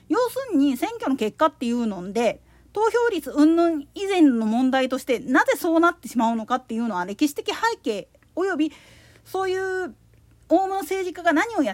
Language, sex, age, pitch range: Japanese, female, 40-59, 250-350 Hz